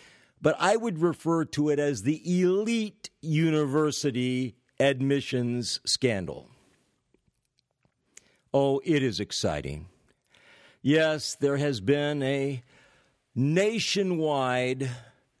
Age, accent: 60-79, American